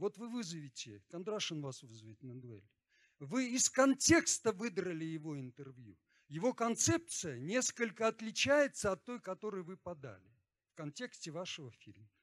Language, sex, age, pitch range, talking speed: Russian, male, 50-69, 120-195 Hz, 130 wpm